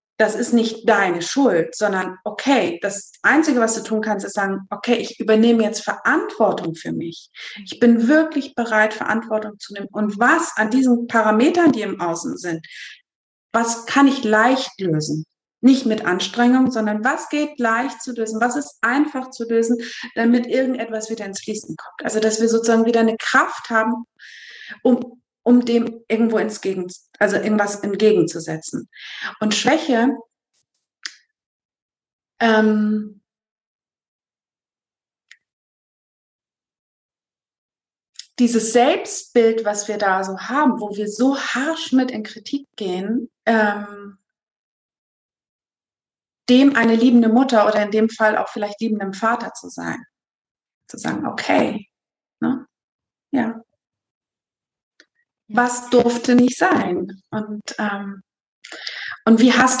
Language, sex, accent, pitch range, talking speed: German, female, German, 210-245 Hz, 125 wpm